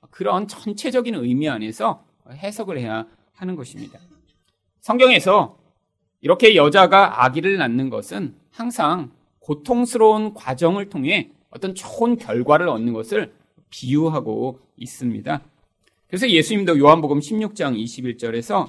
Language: Korean